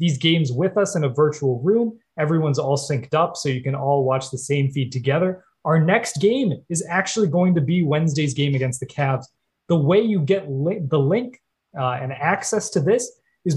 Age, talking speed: 20-39, 210 wpm